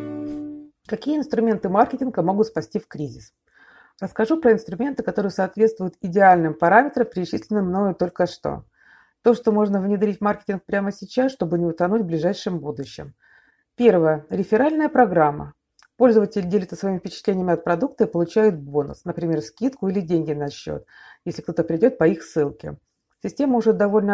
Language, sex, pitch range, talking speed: Russian, female, 175-225 Hz, 145 wpm